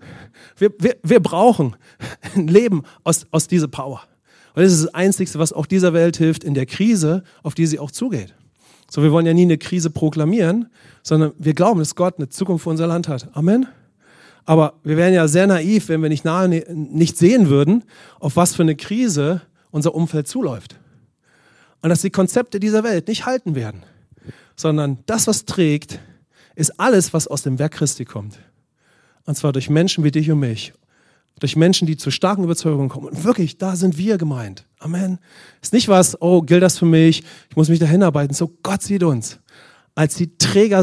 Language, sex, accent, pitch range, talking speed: English, male, German, 150-180 Hz, 195 wpm